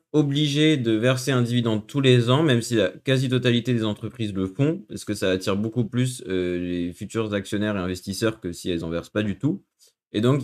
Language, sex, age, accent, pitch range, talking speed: French, male, 20-39, French, 100-125 Hz, 220 wpm